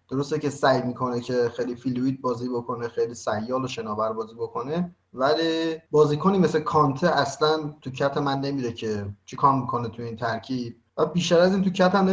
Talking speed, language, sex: 180 wpm, Persian, male